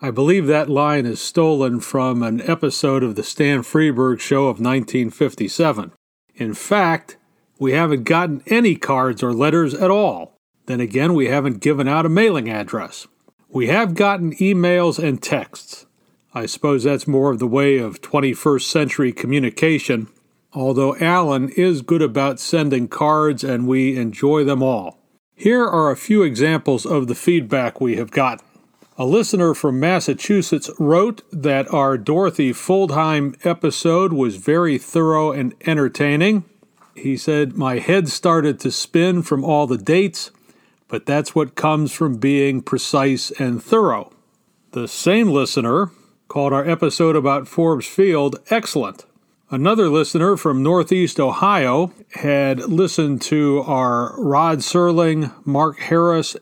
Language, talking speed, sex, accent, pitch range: English, 145 wpm, male, American, 135-170 Hz